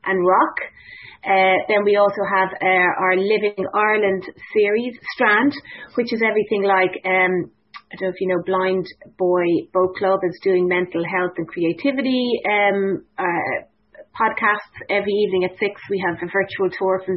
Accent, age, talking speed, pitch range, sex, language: Irish, 30-49, 165 wpm, 185-230 Hz, female, English